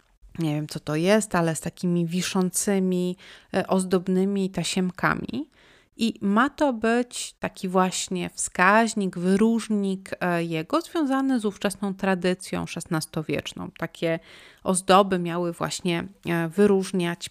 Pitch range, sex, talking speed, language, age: 175-210 Hz, female, 105 wpm, Polish, 30-49